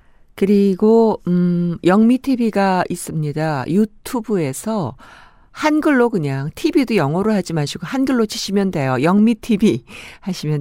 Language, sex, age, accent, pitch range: Korean, female, 50-69, native, 160-220 Hz